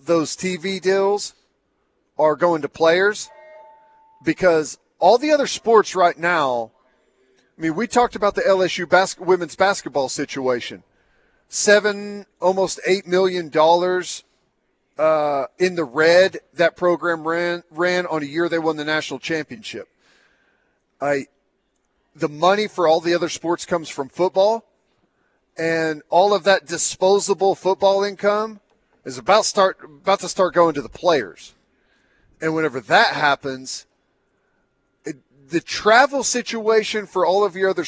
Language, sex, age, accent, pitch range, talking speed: English, male, 40-59, American, 155-200 Hz, 140 wpm